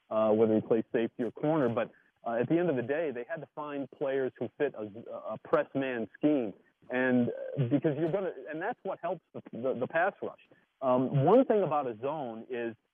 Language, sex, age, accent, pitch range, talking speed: English, male, 40-59, American, 120-145 Hz, 225 wpm